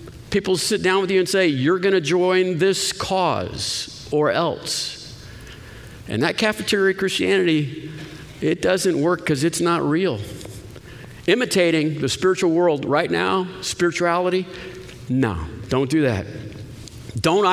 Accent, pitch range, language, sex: American, 145-185 Hz, English, male